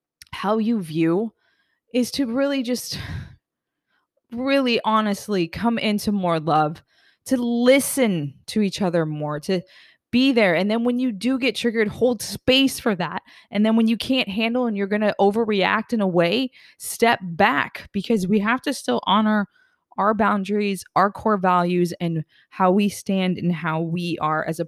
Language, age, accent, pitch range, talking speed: English, 20-39, American, 165-215 Hz, 170 wpm